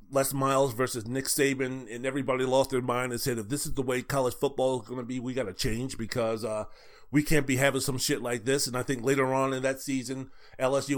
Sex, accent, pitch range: male, American, 125-150 Hz